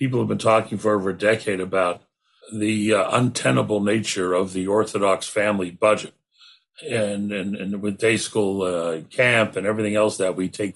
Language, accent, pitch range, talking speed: English, American, 105-145 Hz, 180 wpm